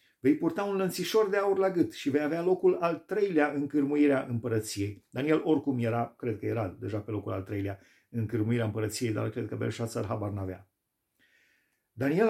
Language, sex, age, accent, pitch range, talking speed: Romanian, male, 40-59, native, 105-150 Hz, 185 wpm